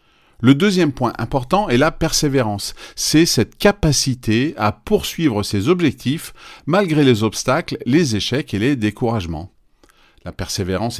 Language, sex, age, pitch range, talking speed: French, male, 40-59, 100-140 Hz, 130 wpm